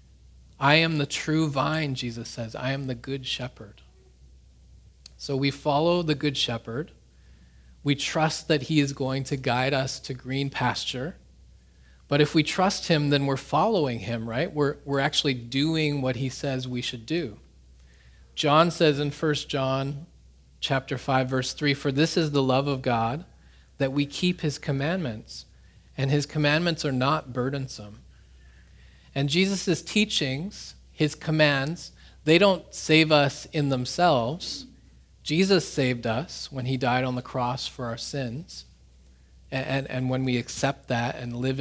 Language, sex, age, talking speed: English, male, 30-49, 155 wpm